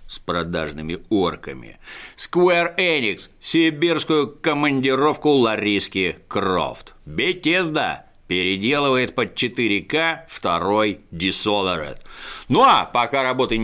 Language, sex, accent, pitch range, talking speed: Russian, male, native, 100-155 Hz, 85 wpm